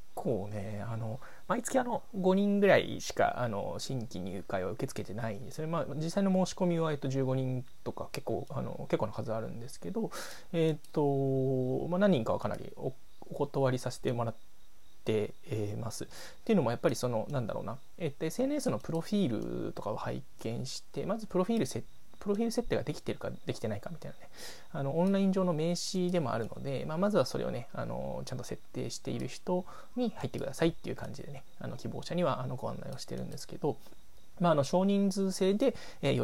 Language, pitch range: Japanese, 125-185 Hz